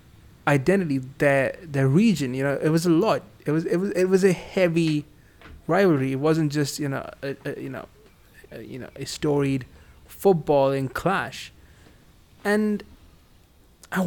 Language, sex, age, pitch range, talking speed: English, male, 20-39, 135-180 Hz, 145 wpm